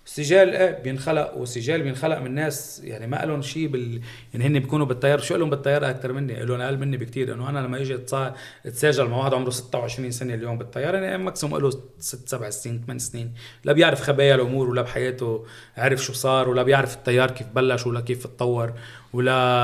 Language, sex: Arabic, male